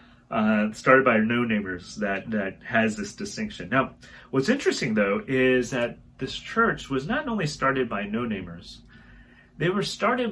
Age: 30-49